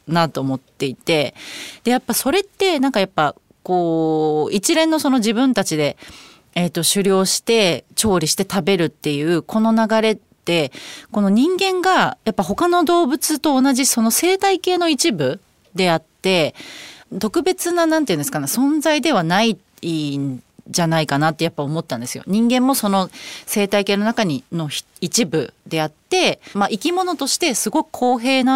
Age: 30-49